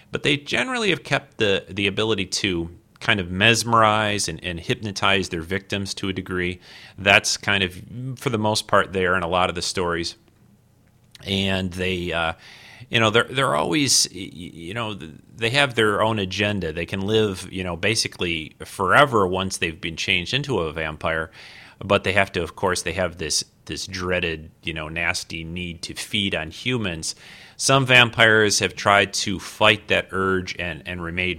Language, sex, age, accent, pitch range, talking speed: English, male, 30-49, American, 90-105 Hz, 180 wpm